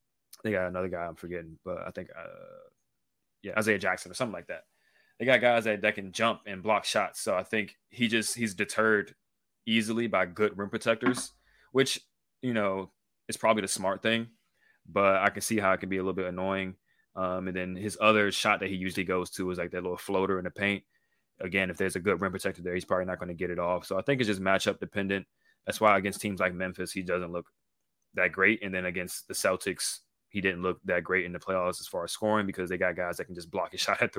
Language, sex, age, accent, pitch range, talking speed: English, male, 20-39, American, 90-105 Hz, 245 wpm